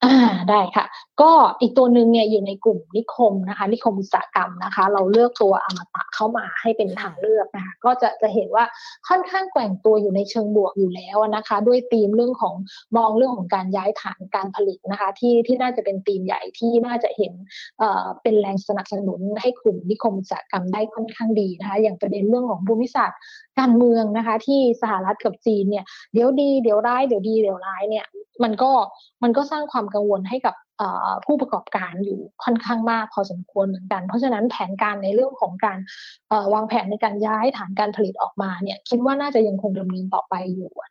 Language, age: Thai, 20-39